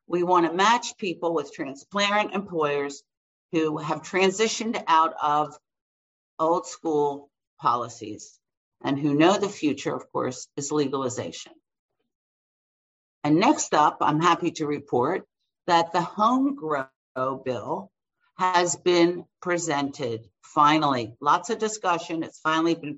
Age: 50-69